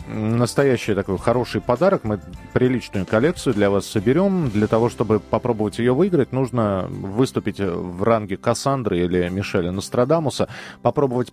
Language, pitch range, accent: Russian, 95-130 Hz, native